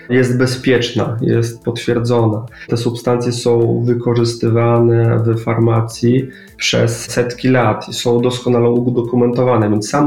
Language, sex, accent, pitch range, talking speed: Polish, male, native, 115-125 Hz, 115 wpm